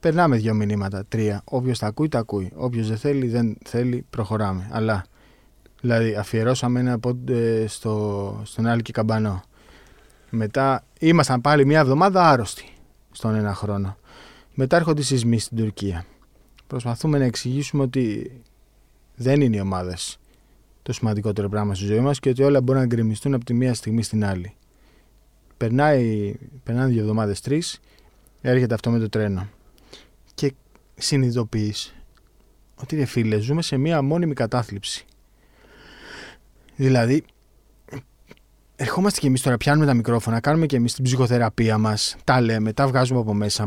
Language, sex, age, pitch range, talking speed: Greek, male, 20-39, 105-135 Hz, 140 wpm